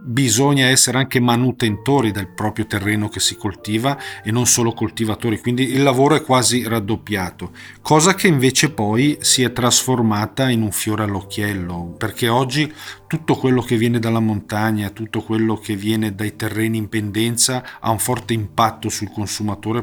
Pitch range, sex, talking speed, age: 105-120 Hz, male, 160 wpm, 40-59